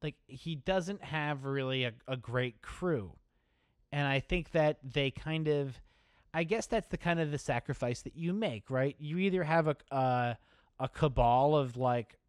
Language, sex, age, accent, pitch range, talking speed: English, male, 30-49, American, 120-150 Hz, 180 wpm